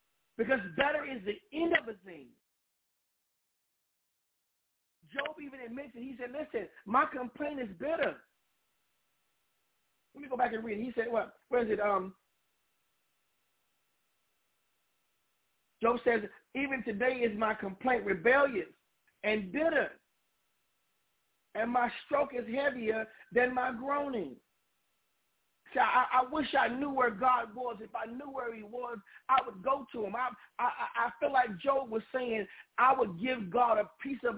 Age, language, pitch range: 40-59, English, 220-265 Hz